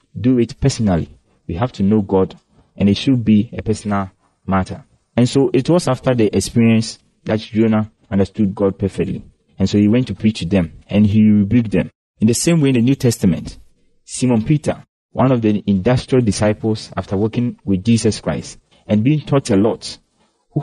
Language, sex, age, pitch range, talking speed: English, male, 30-49, 100-125 Hz, 190 wpm